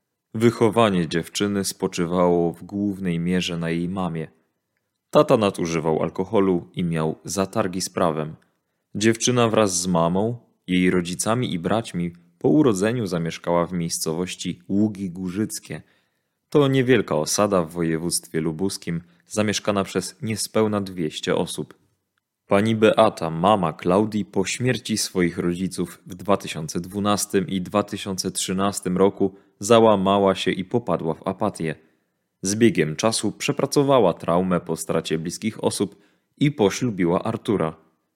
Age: 20-39